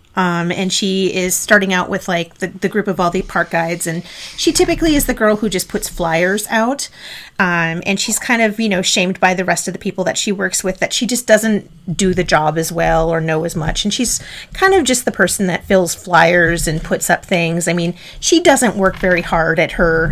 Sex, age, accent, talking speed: female, 30-49, American, 240 wpm